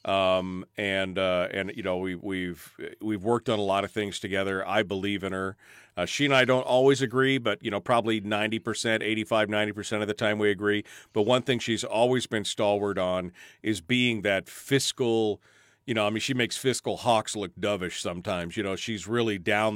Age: 40-59